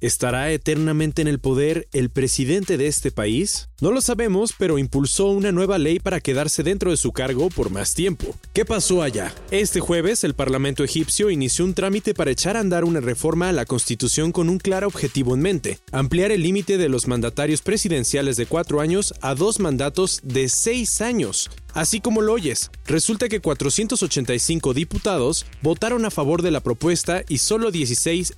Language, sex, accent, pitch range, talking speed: Spanish, male, Mexican, 135-185 Hz, 180 wpm